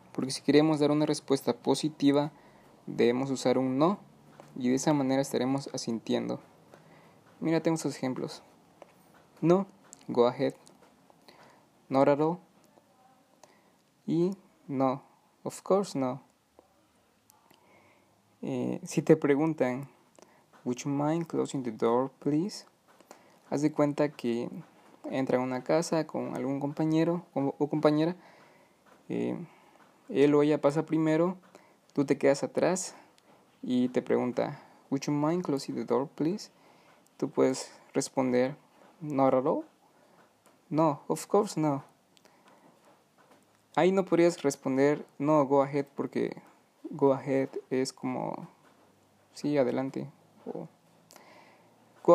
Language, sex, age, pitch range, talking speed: Spanish, male, 20-39, 130-160 Hz, 115 wpm